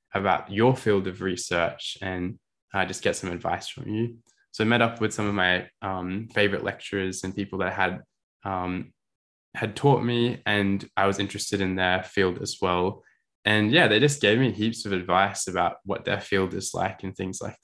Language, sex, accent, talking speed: English, male, Australian, 210 wpm